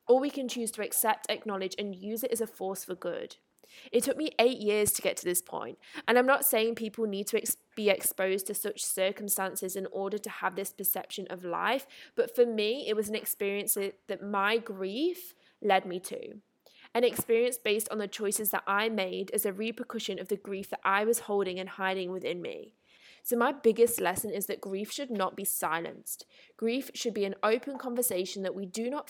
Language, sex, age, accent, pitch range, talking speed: English, female, 20-39, British, 190-230 Hz, 210 wpm